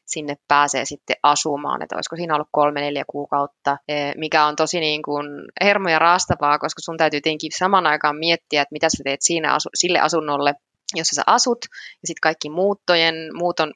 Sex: female